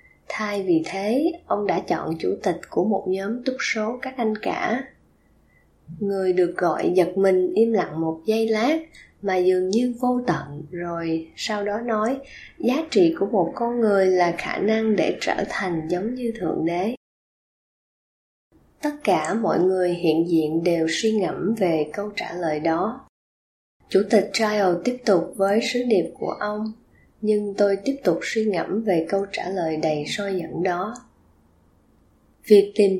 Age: 20-39